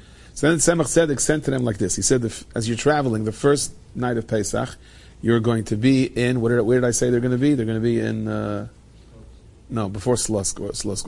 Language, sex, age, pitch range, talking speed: English, male, 40-59, 110-135 Hz, 225 wpm